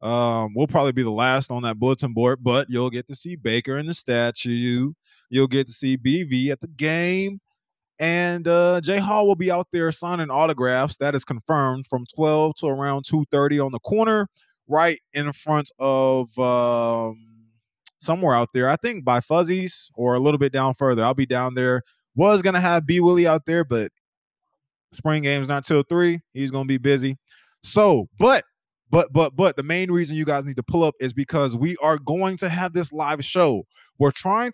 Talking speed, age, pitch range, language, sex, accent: 200 wpm, 20-39, 125-160 Hz, English, male, American